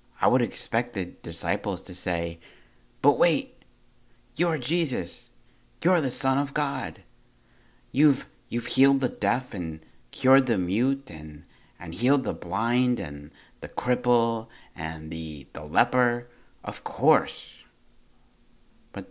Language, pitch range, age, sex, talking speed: English, 90-120 Hz, 50-69, male, 125 wpm